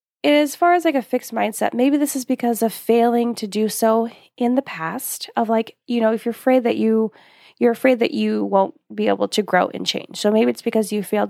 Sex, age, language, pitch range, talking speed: female, 20-39, English, 215-270 Hz, 240 wpm